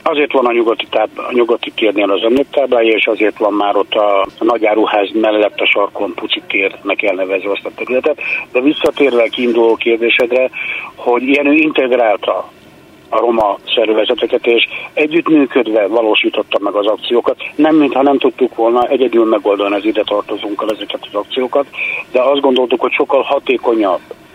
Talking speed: 145 wpm